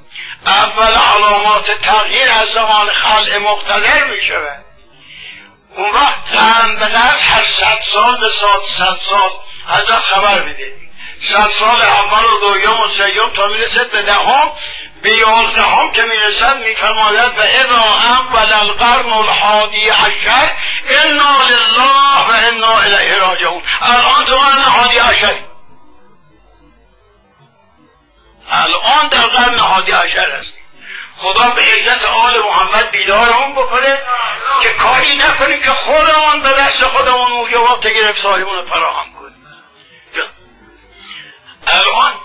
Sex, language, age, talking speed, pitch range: male, Persian, 50-69, 100 wpm, 210-255 Hz